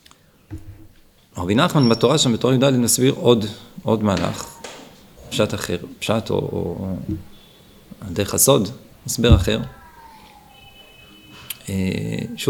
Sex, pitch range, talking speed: male, 100-120 Hz, 100 wpm